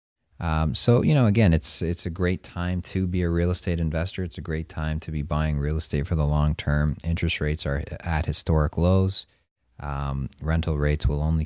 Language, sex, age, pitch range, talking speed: English, male, 30-49, 75-85 Hz, 210 wpm